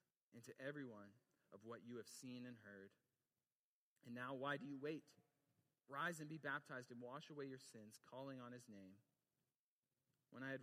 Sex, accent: male, American